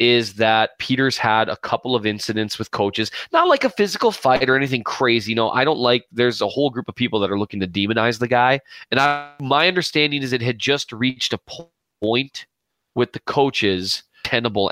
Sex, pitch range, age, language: male, 105-130 Hz, 20-39, English